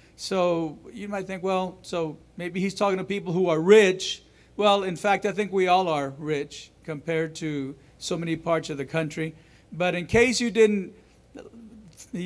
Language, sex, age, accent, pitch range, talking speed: English, male, 50-69, American, 170-210 Hz, 175 wpm